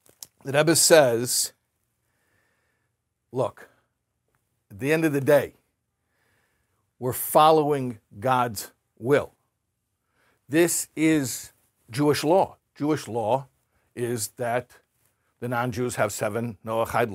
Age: 60-79